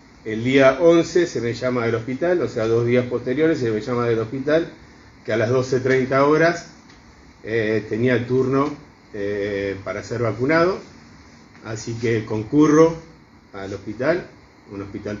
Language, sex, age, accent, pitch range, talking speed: Spanish, male, 30-49, Argentinian, 105-130 Hz, 150 wpm